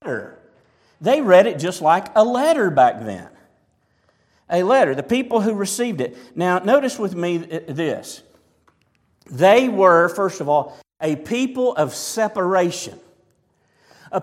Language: English